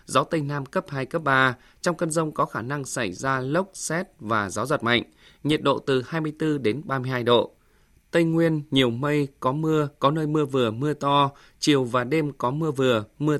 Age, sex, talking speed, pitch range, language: 20-39, male, 210 wpm, 125-155 Hz, Vietnamese